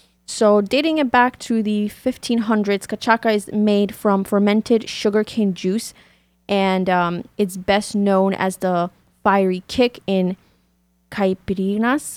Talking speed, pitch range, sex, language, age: 125 wpm, 185-220 Hz, female, English, 20-39